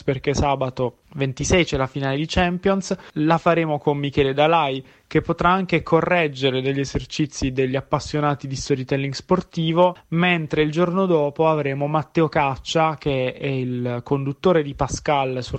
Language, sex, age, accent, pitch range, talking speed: Italian, male, 20-39, native, 140-175 Hz, 145 wpm